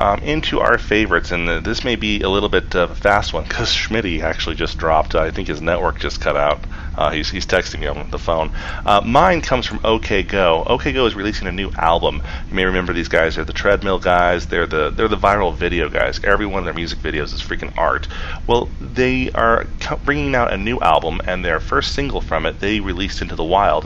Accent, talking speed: American, 240 wpm